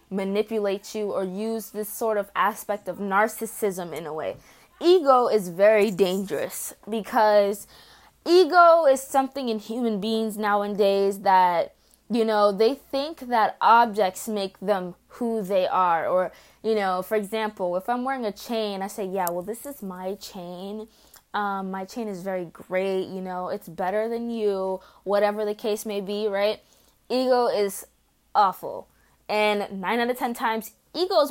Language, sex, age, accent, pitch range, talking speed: English, female, 20-39, American, 195-225 Hz, 160 wpm